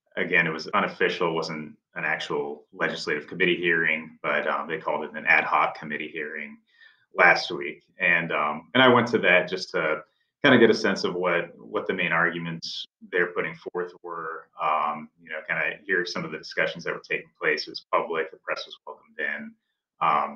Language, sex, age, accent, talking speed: English, male, 30-49, American, 205 wpm